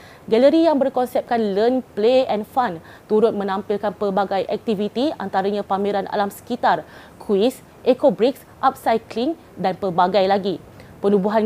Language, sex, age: Malay, female, 20-39